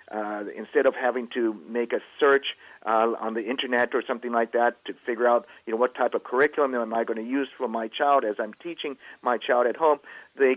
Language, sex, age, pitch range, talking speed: English, male, 50-69, 115-135 Hz, 235 wpm